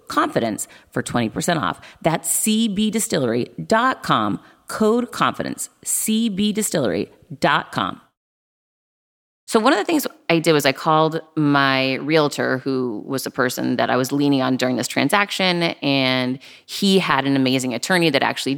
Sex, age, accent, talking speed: female, 30-49, American, 130 wpm